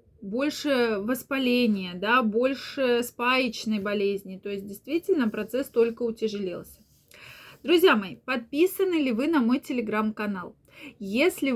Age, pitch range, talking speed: 20-39, 220-270 Hz, 110 wpm